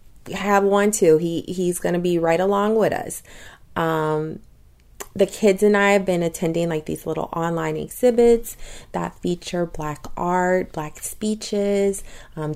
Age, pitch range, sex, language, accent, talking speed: 30-49, 160-200 Hz, female, English, American, 155 wpm